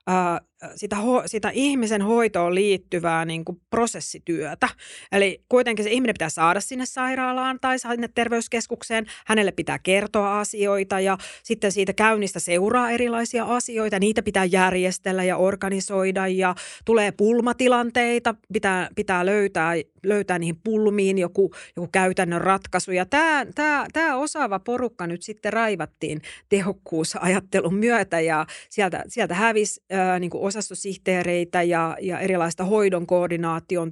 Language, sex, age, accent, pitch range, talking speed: Finnish, female, 30-49, native, 180-235 Hz, 125 wpm